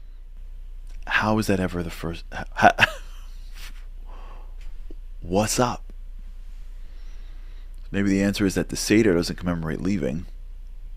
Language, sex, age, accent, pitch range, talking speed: English, male, 30-49, American, 65-90 Hz, 100 wpm